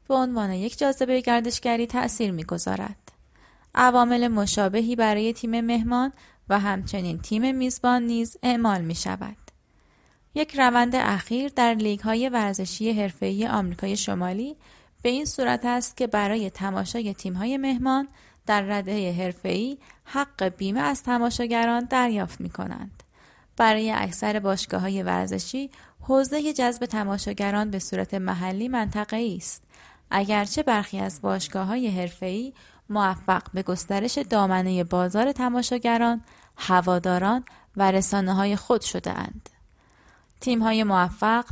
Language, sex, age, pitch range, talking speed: Persian, female, 20-39, 195-245 Hz, 115 wpm